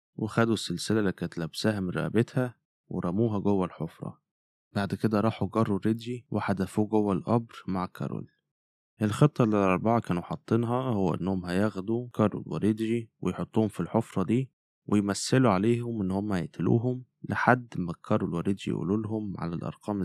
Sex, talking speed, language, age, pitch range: male, 140 wpm, Arabic, 20-39, 90-110 Hz